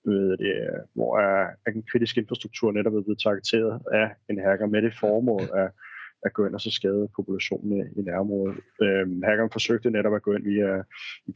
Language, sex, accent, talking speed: Danish, male, native, 180 wpm